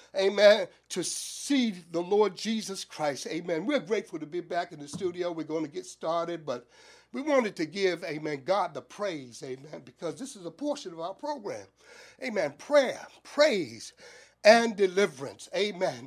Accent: American